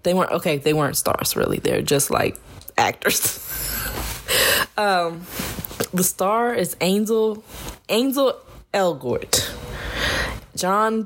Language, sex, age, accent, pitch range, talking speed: English, female, 10-29, American, 150-190 Hz, 105 wpm